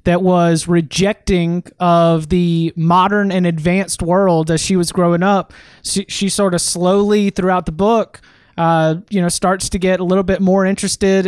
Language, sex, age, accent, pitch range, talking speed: English, male, 30-49, American, 175-200 Hz, 175 wpm